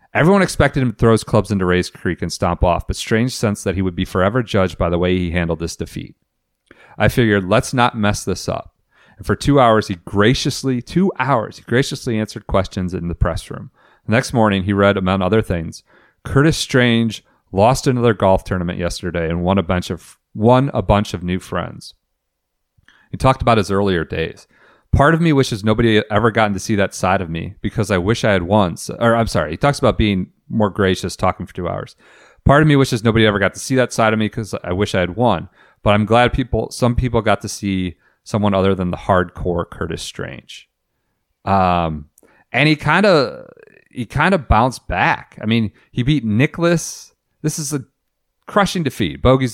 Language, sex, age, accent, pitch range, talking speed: English, male, 40-59, American, 95-125 Hz, 205 wpm